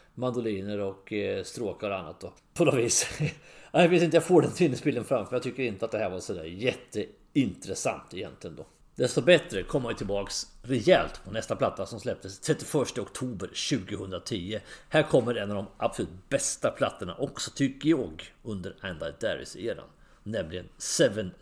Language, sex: English, male